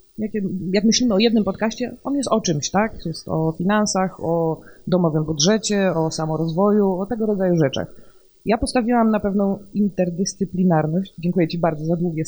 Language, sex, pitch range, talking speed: Polish, female, 175-230 Hz, 155 wpm